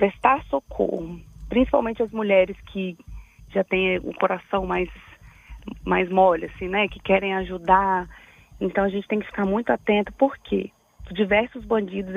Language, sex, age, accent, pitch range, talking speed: Portuguese, female, 30-49, Brazilian, 195-230 Hz, 150 wpm